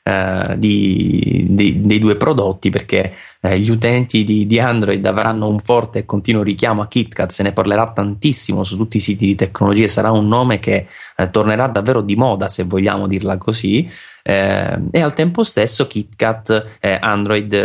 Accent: native